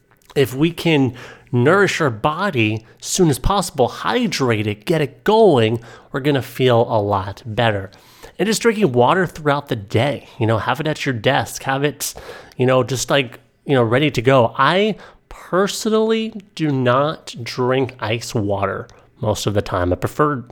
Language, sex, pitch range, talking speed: English, male, 110-135 Hz, 175 wpm